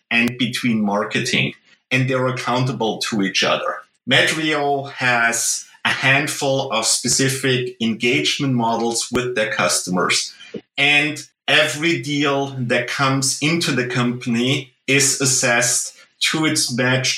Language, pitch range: English, 120-135 Hz